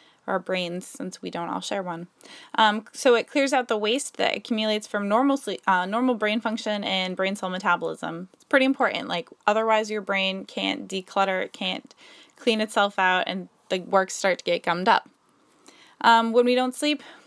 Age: 20-39